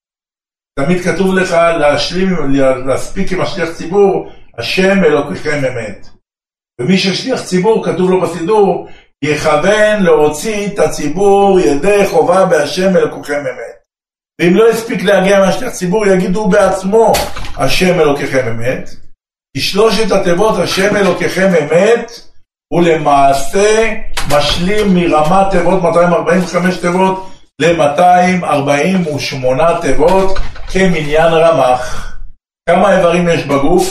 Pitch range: 155-200 Hz